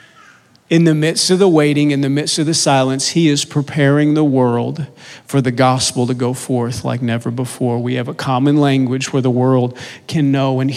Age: 40-59